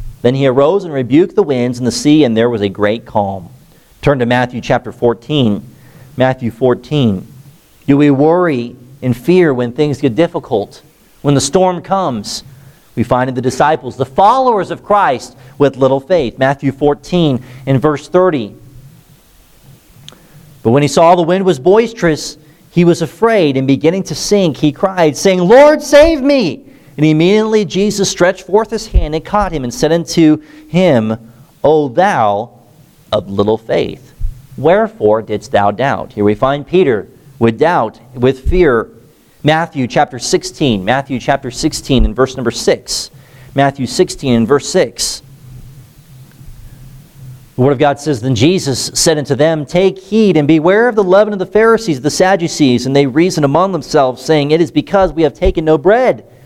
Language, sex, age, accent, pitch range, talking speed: English, male, 40-59, American, 130-170 Hz, 165 wpm